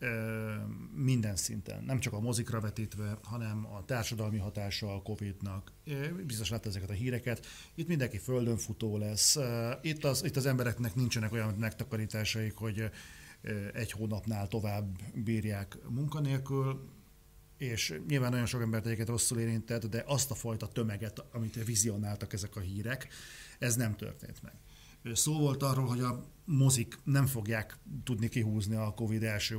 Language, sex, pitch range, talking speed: Hungarian, male, 105-125 Hz, 140 wpm